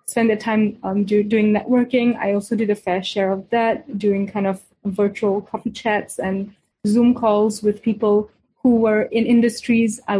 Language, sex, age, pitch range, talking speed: English, female, 20-39, 205-235 Hz, 180 wpm